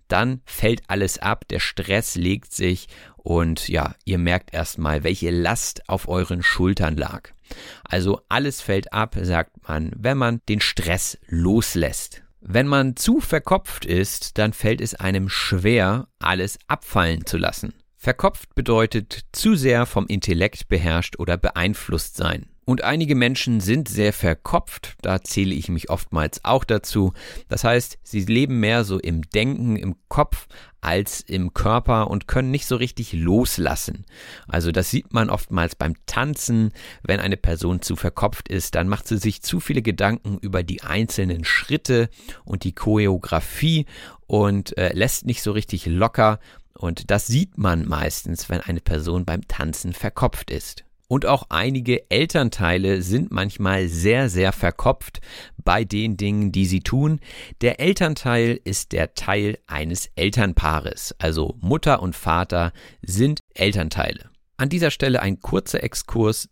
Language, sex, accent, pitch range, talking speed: German, male, German, 90-115 Hz, 150 wpm